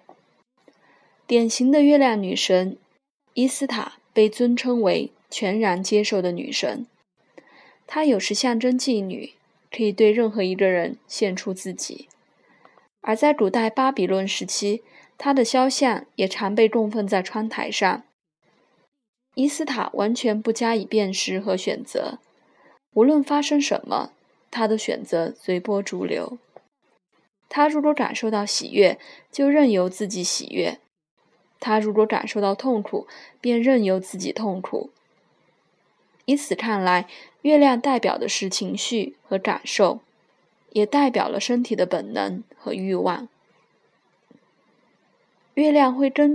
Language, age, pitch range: Chinese, 20-39, 200-260 Hz